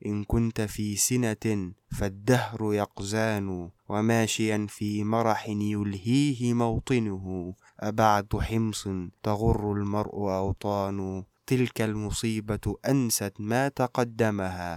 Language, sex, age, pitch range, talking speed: Arabic, male, 20-39, 100-110 Hz, 85 wpm